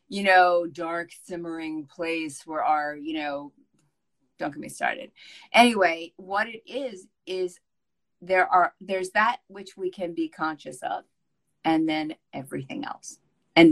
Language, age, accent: English, 40-59, American